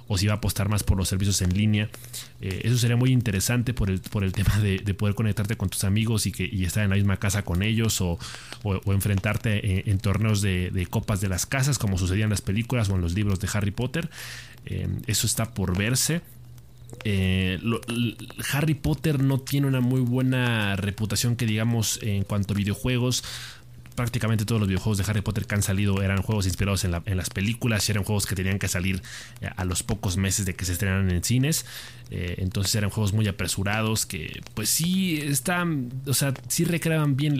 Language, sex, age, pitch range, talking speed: Spanish, male, 30-49, 100-120 Hz, 210 wpm